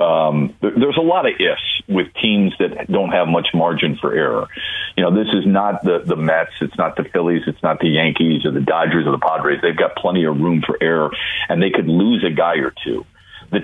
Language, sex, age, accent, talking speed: English, male, 50-69, American, 235 wpm